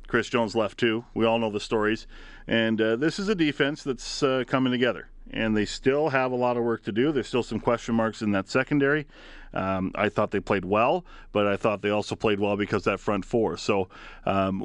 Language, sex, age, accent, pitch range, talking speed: English, male, 40-59, American, 105-125 Hz, 235 wpm